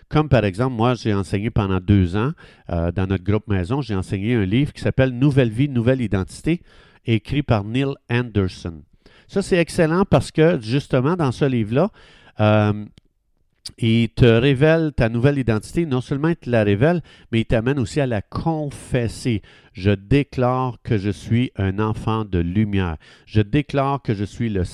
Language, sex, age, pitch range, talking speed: French, male, 50-69, 105-135 Hz, 170 wpm